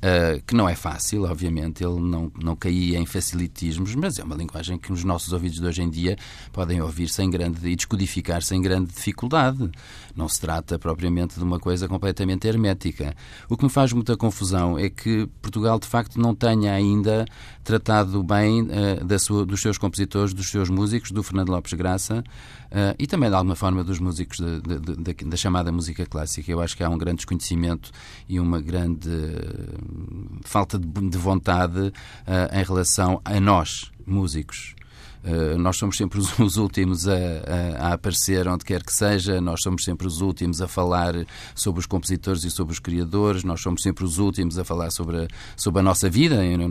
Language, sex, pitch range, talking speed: Portuguese, male, 85-105 Hz, 180 wpm